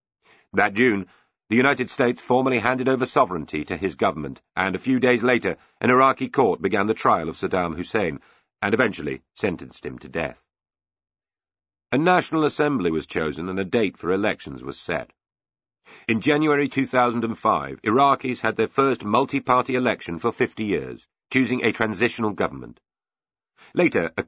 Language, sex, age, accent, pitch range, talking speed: English, male, 50-69, British, 100-130 Hz, 155 wpm